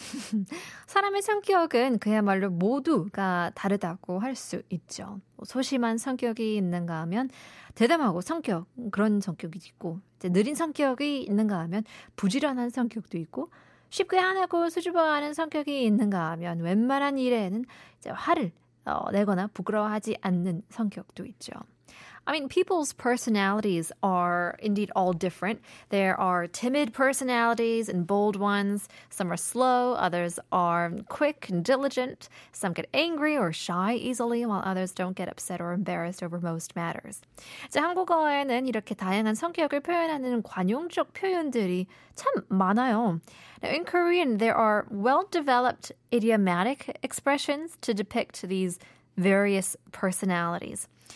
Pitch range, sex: 185-270 Hz, female